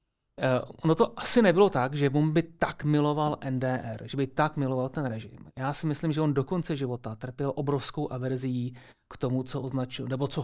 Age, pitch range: 30-49, 125-145 Hz